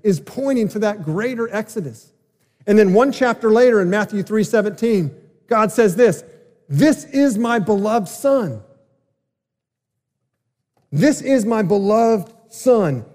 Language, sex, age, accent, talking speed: English, male, 40-59, American, 130 wpm